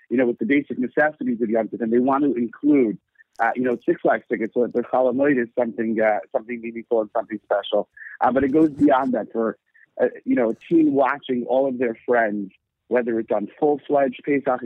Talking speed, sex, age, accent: 225 wpm, male, 50-69, American